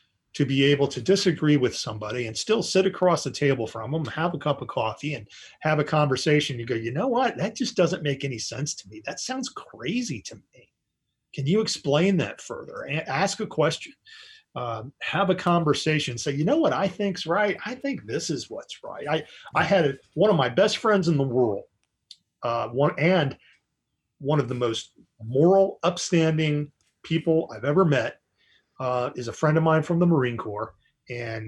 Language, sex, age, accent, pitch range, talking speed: English, male, 40-59, American, 120-170 Hz, 200 wpm